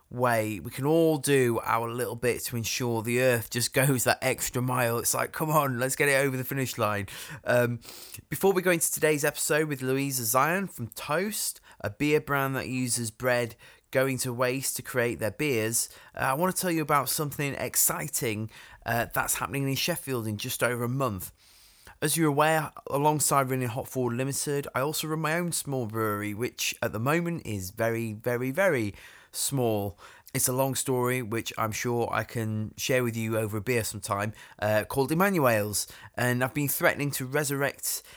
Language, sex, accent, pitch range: English, male, British, 110-140 Hz